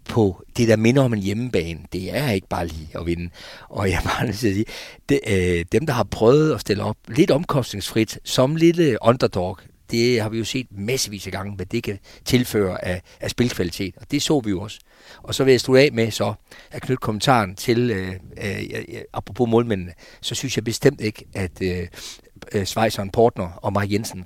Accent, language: native, Danish